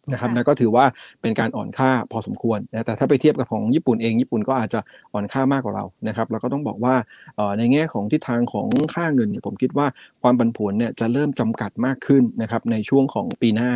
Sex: male